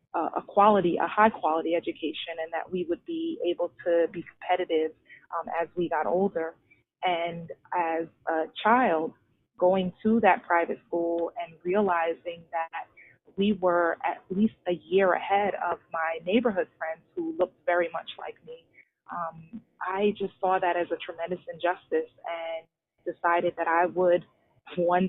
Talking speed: 150 wpm